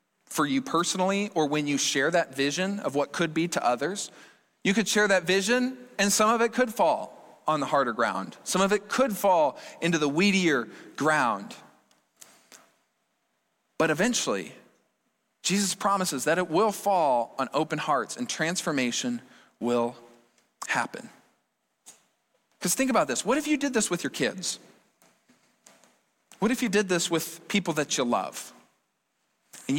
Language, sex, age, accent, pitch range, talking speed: English, male, 40-59, American, 175-245 Hz, 155 wpm